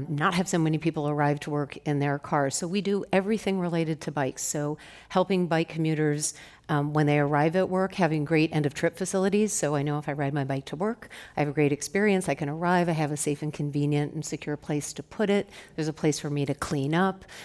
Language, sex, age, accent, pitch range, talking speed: English, female, 50-69, American, 145-175 Hz, 250 wpm